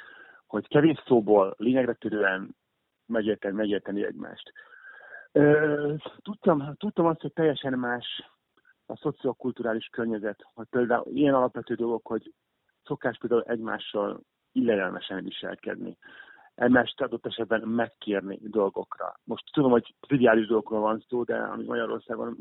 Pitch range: 110-145 Hz